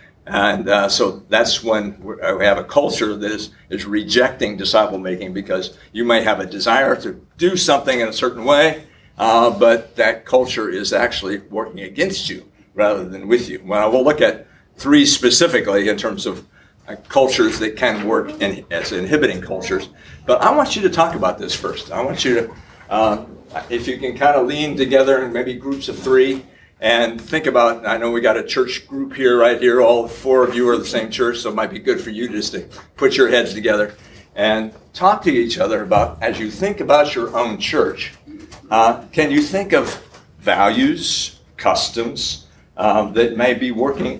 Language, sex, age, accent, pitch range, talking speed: English, male, 60-79, American, 115-150 Hz, 195 wpm